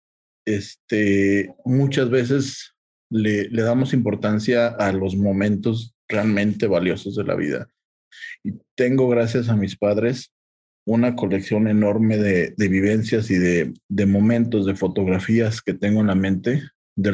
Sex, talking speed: male, 135 wpm